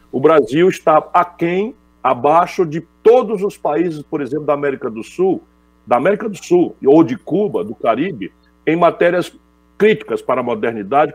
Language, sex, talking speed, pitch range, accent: Portuguese, male, 160 wpm, 125-175 Hz, Brazilian